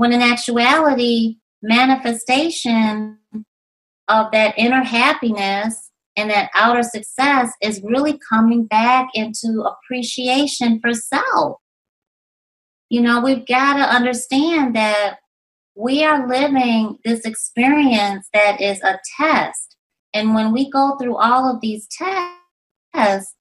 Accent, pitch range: American, 215-255 Hz